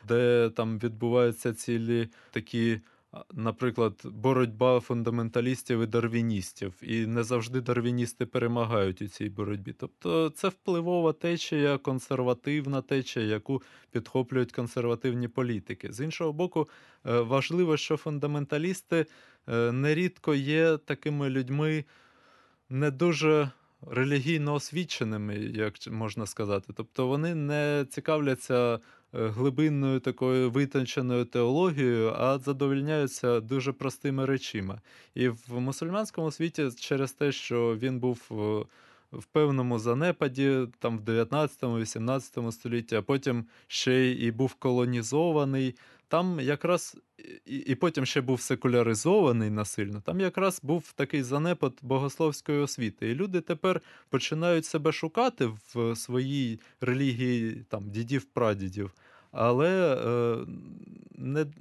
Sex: male